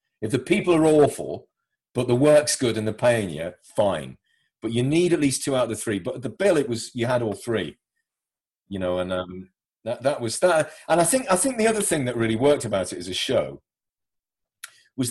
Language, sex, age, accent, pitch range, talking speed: English, male, 40-59, British, 105-145 Hz, 235 wpm